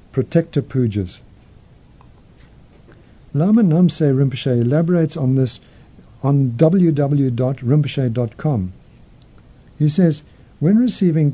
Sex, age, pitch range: male, 60-79, 120-155 Hz